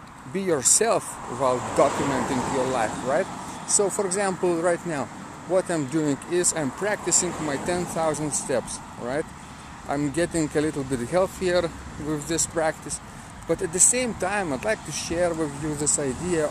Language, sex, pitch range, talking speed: English, male, 140-175 Hz, 160 wpm